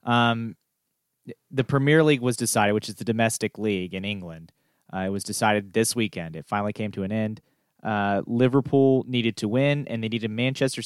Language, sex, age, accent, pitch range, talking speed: English, male, 30-49, American, 100-125 Hz, 190 wpm